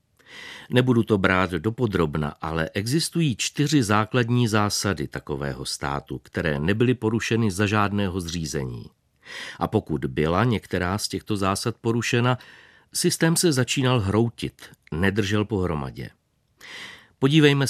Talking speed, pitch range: 110 wpm, 90-120 Hz